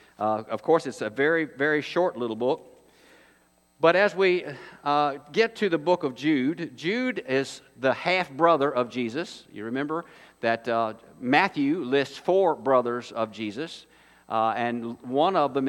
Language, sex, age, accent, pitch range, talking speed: English, male, 50-69, American, 120-155 Hz, 155 wpm